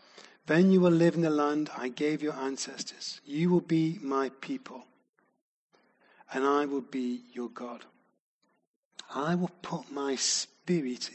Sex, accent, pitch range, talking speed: male, British, 135-170 Hz, 145 wpm